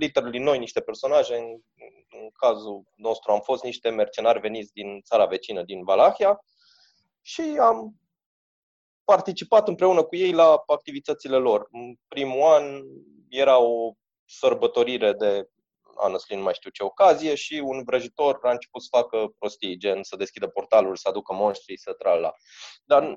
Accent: native